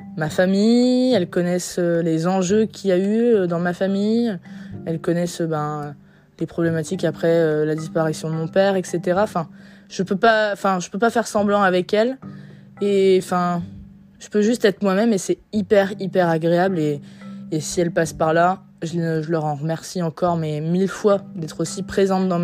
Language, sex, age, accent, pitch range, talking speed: French, female, 20-39, French, 165-195 Hz, 185 wpm